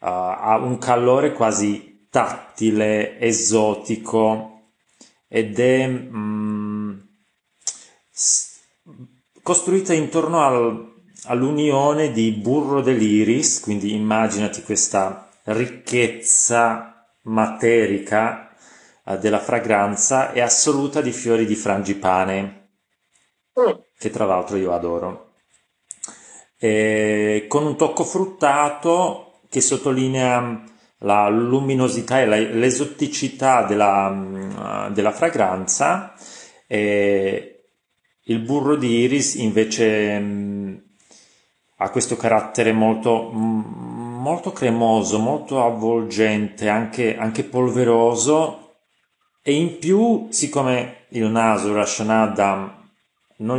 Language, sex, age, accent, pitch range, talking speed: Italian, male, 30-49, native, 105-130 Hz, 80 wpm